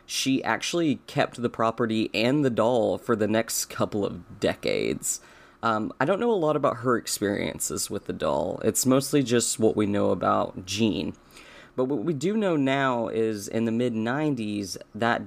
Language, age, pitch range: English, 30-49, 105-125 Hz